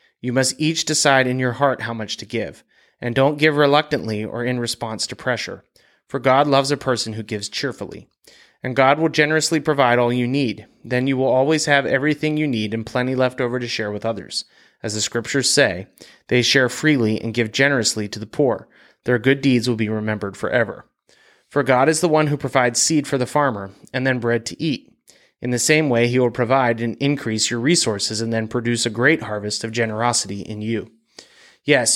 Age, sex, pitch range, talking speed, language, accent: 30-49, male, 115-140 Hz, 205 wpm, English, American